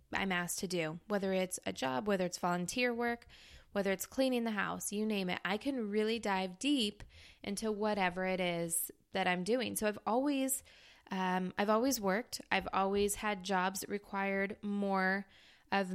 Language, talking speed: English, 175 wpm